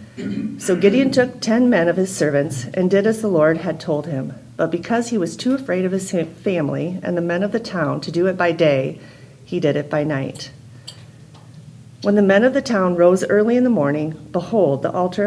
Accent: American